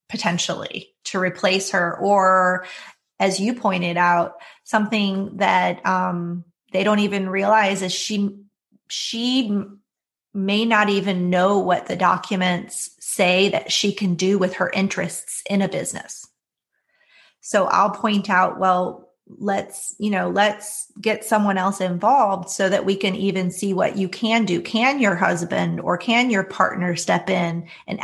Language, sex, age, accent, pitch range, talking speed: English, female, 30-49, American, 180-205 Hz, 150 wpm